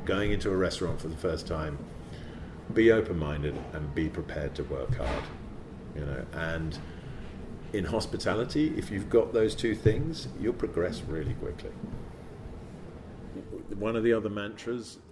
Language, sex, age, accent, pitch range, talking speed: English, male, 40-59, British, 75-100 Hz, 145 wpm